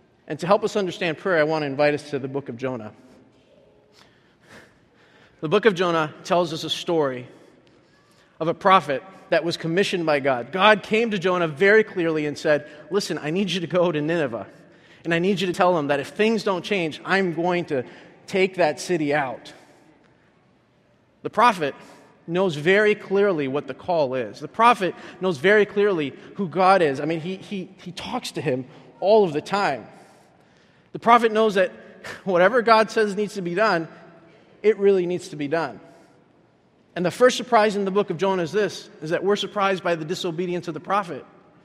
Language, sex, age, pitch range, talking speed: English, male, 30-49, 165-210 Hz, 195 wpm